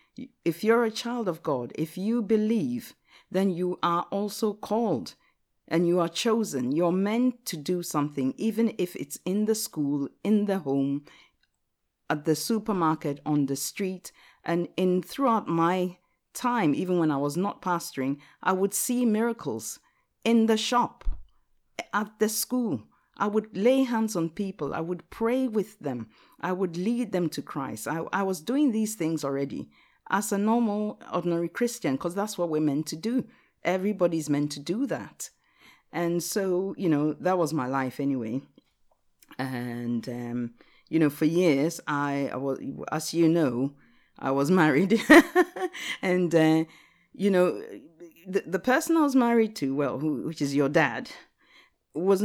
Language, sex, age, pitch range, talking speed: English, female, 50-69, 150-220 Hz, 165 wpm